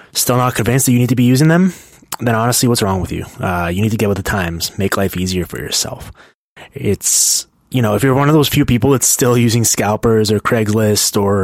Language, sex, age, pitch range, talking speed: English, male, 20-39, 100-125 Hz, 240 wpm